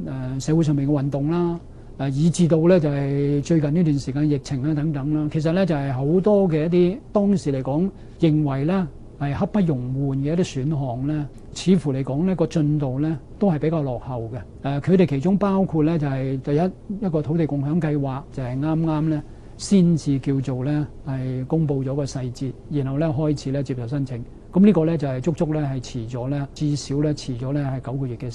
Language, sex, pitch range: Chinese, male, 135-165 Hz